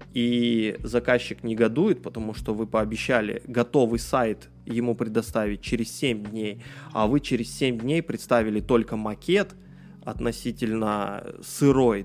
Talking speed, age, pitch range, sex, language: 120 wpm, 20-39, 110-125 Hz, male, Russian